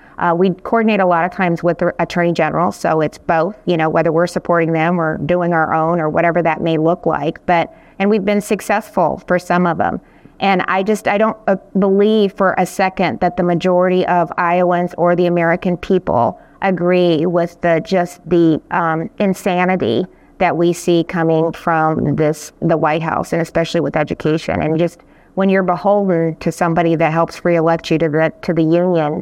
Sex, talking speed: female, 190 wpm